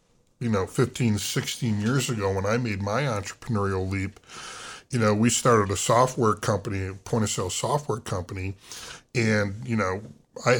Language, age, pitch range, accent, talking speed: English, 10-29, 100-120 Hz, American, 165 wpm